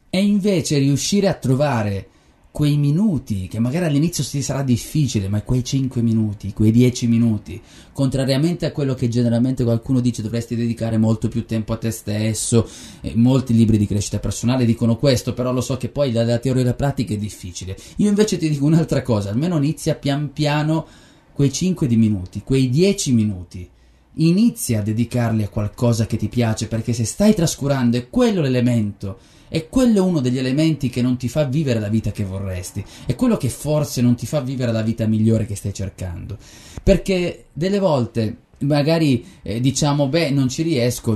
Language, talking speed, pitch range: Italian, 180 wpm, 115-150 Hz